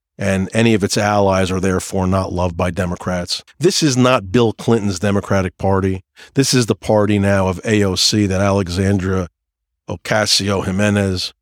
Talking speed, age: 150 wpm, 40-59